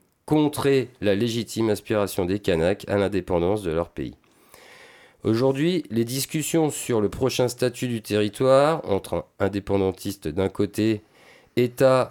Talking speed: 125 wpm